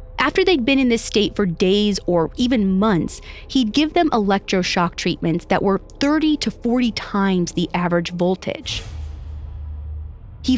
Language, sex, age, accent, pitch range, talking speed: English, female, 20-39, American, 180-255 Hz, 145 wpm